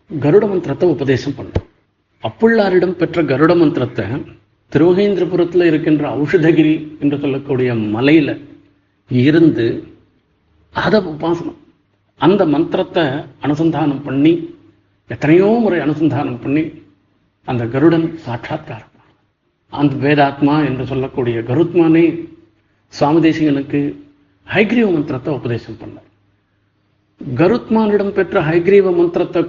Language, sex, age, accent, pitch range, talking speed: Tamil, male, 50-69, native, 115-170 Hz, 90 wpm